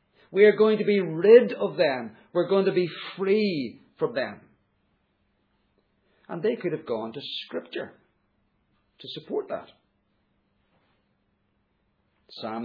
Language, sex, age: English, male, 50-69